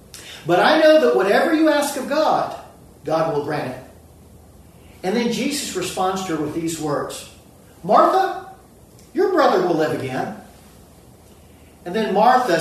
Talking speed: 150 wpm